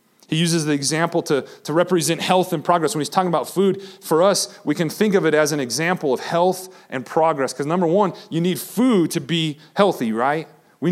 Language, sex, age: English, male, 30-49